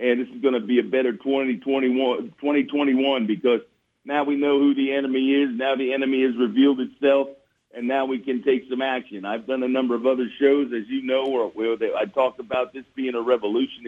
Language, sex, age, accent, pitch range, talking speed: English, male, 50-69, American, 125-140 Hz, 210 wpm